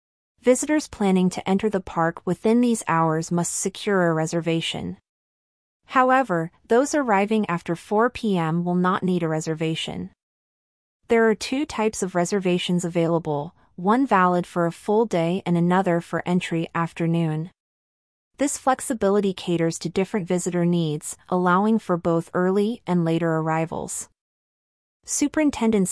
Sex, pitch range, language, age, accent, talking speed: female, 170-205 Hz, English, 30-49, American, 130 wpm